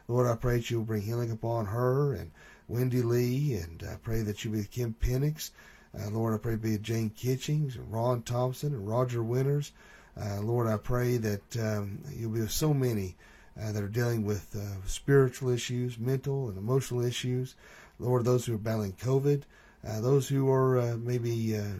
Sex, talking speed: male, 205 wpm